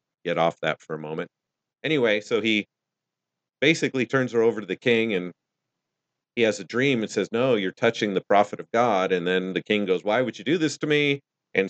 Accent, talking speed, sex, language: American, 220 wpm, male, English